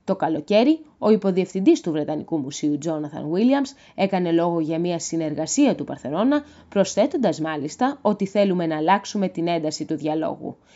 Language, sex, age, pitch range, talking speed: Greek, female, 20-39, 155-235 Hz, 145 wpm